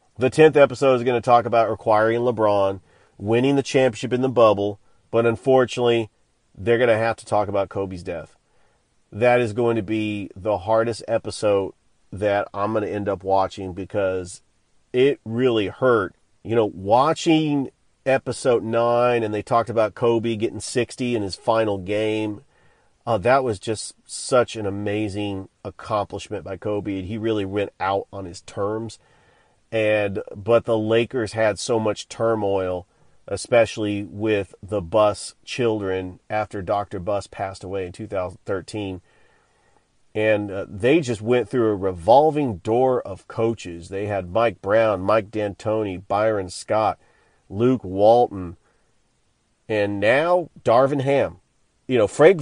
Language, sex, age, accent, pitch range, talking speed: English, male, 40-59, American, 100-125 Hz, 145 wpm